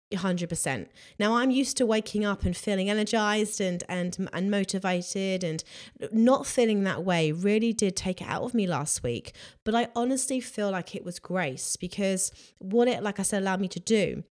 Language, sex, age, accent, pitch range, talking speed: English, female, 20-39, British, 185-245 Hz, 195 wpm